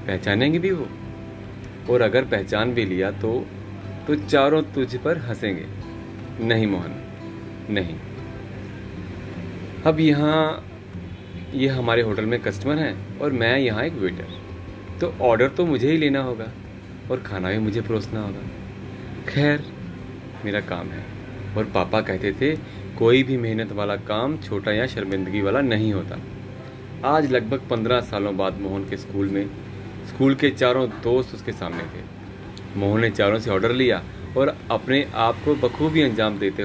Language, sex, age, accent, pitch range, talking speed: Hindi, male, 30-49, native, 95-125 Hz, 150 wpm